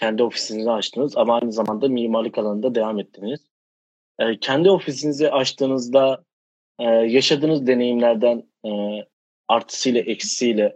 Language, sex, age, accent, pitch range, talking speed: Turkish, male, 30-49, native, 115-140 Hz, 105 wpm